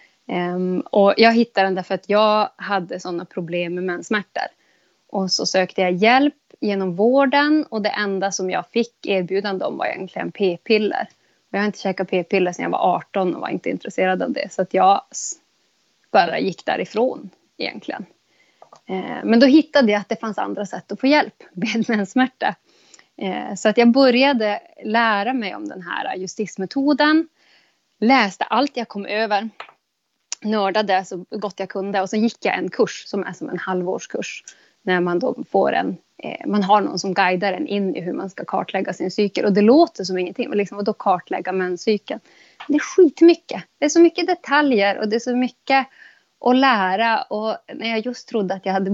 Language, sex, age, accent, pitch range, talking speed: Swedish, female, 20-39, native, 190-245 Hz, 185 wpm